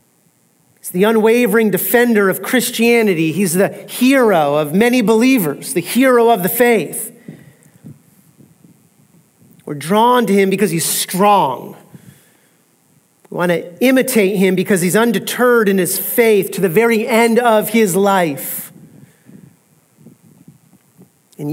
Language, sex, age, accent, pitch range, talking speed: English, male, 40-59, American, 180-225 Hz, 115 wpm